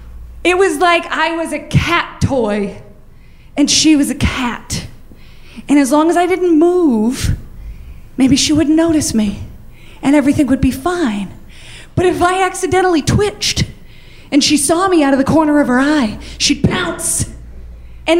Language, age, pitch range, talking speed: English, 30-49, 265-375 Hz, 160 wpm